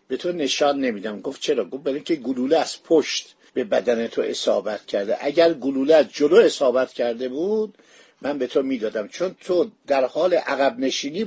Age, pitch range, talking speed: 50-69, 140-190 Hz, 180 wpm